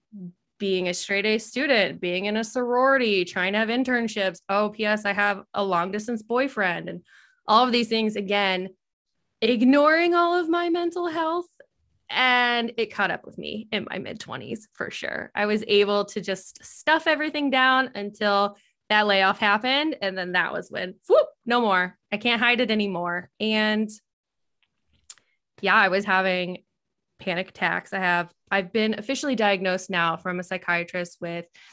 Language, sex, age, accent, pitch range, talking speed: English, female, 20-39, American, 185-240 Hz, 165 wpm